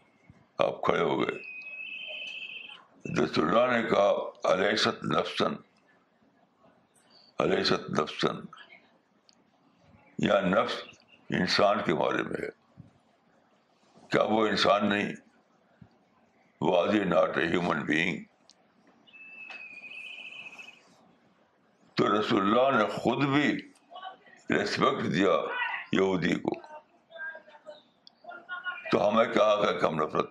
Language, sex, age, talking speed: Urdu, male, 60-79, 85 wpm